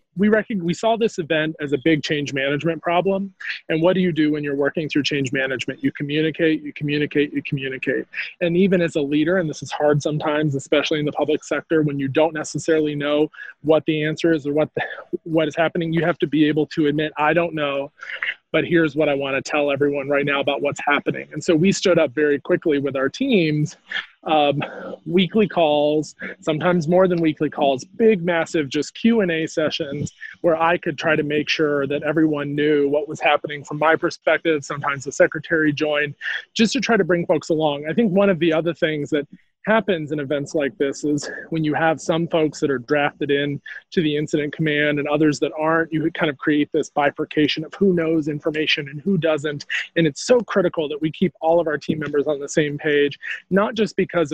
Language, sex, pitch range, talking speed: English, male, 150-170 Hz, 210 wpm